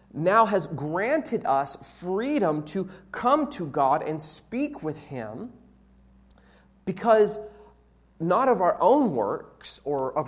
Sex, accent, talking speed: male, American, 125 wpm